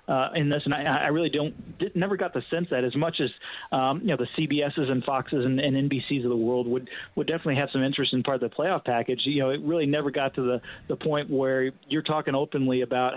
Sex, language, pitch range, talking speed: male, English, 130-160 Hz, 260 wpm